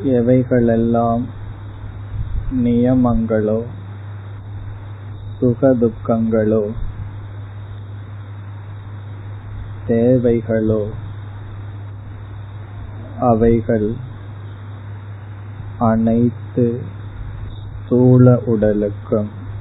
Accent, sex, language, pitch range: native, male, Tamil, 100-115 Hz